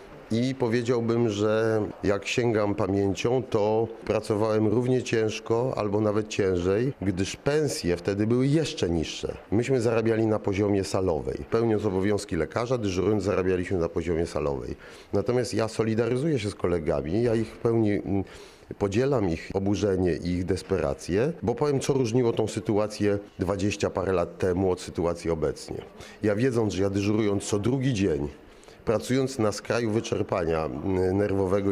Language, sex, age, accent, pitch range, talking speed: Polish, male, 40-59, native, 100-120 Hz, 140 wpm